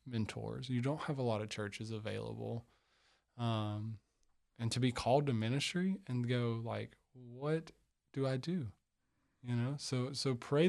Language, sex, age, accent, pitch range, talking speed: English, male, 20-39, American, 115-130 Hz, 155 wpm